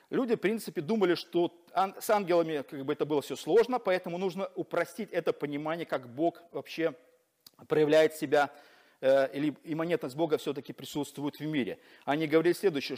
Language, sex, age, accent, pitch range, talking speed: Russian, male, 40-59, native, 155-205 Hz, 150 wpm